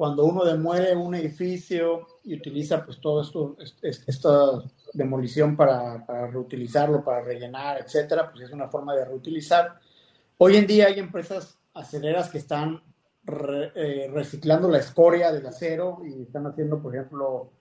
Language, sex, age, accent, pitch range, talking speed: Spanish, male, 50-69, Mexican, 135-175 Hz, 150 wpm